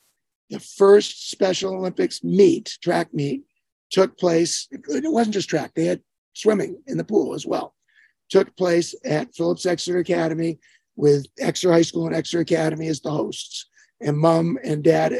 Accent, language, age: American, English, 50-69